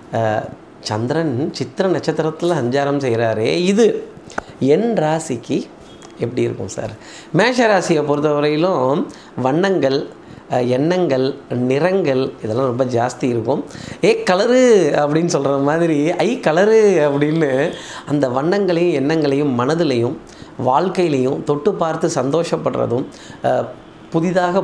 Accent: native